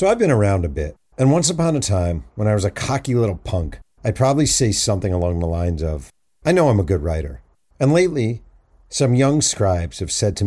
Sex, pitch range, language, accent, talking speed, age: male, 85-115 Hz, English, American, 230 wpm, 50-69